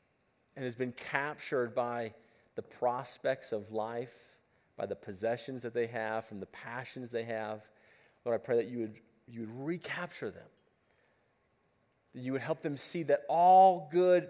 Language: English